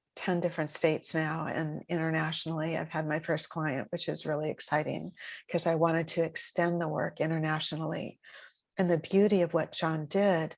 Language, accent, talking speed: English, American, 170 wpm